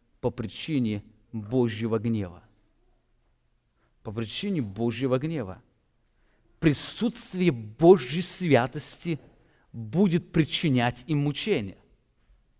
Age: 40-59